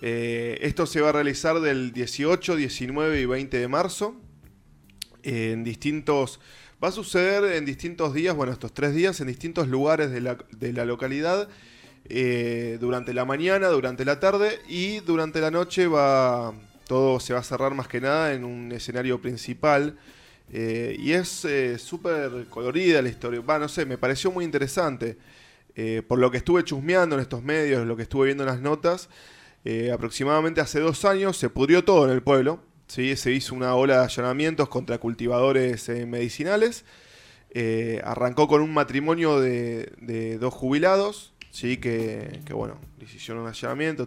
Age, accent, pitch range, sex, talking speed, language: 20-39, Argentinian, 120-155 Hz, male, 170 wpm, Spanish